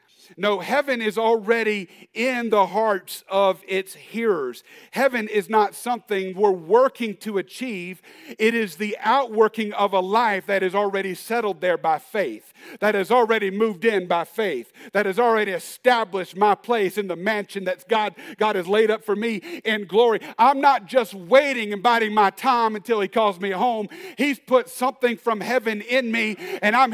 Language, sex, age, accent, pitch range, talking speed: English, male, 50-69, American, 195-240 Hz, 180 wpm